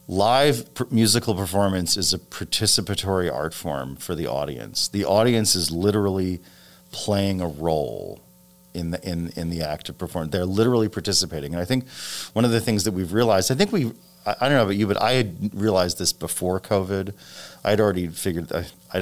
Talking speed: 185 wpm